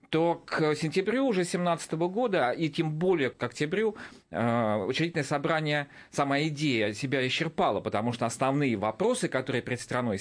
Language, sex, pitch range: Russian, male, 120-155 Hz